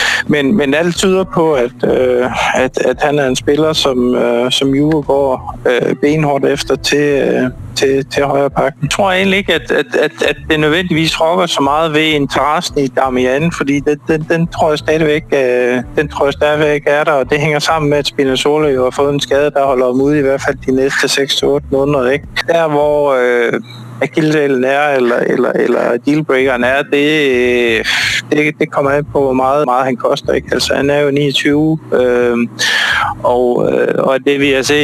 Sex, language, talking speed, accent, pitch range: male, Danish, 200 wpm, native, 125-145 Hz